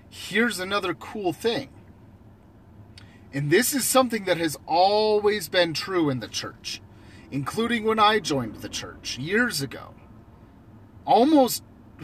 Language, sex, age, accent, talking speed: English, male, 30-49, American, 125 wpm